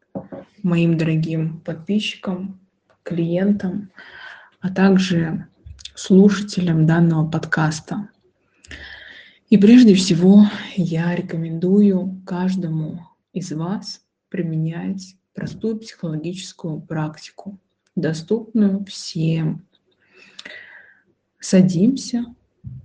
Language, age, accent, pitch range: Russian, 20-39, native, 170-200 Hz